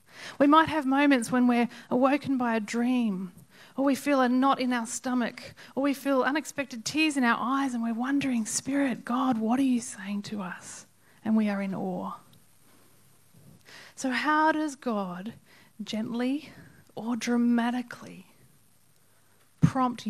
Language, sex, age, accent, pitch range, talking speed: English, female, 30-49, Australian, 210-255 Hz, 150 wpm